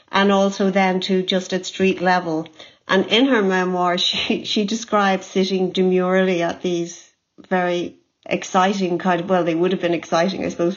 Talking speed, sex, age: 175 wpm, female, 40-59